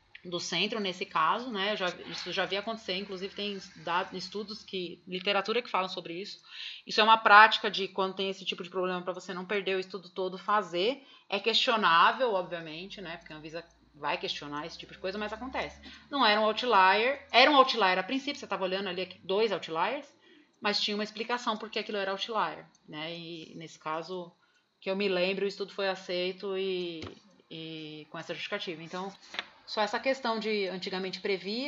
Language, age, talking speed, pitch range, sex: Portuguese, 30-49, 190 wpm, 180-225 Hz, female